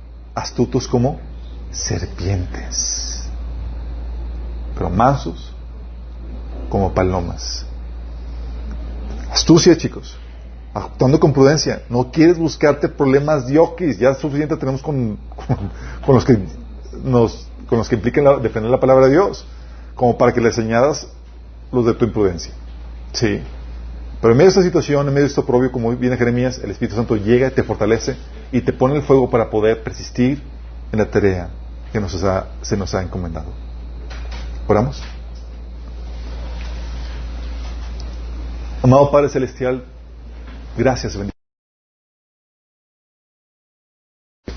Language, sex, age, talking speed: Spanish, male, 40-59, 125 wpm